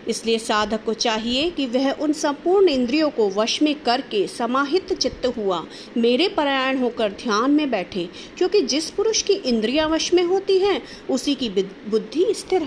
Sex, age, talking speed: female, 50-69, 165 wpm